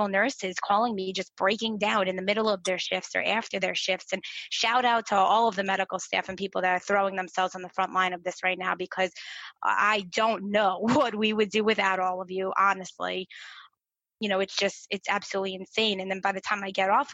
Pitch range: 190-210 Hz